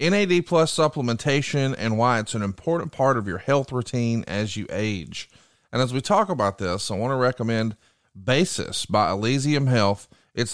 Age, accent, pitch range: 40-59, American, 110-145 Hz